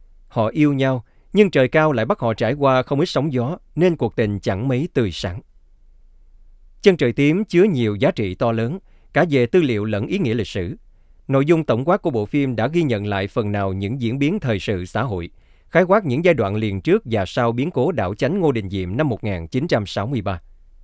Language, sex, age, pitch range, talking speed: Vietnamese, male, 20-39, 100-145 Hz, 225 wpm